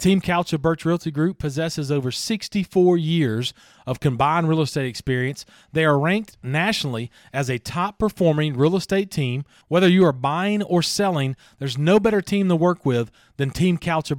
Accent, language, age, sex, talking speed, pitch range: American, English, 40-59, male, 180 wpm, 145-185 Hz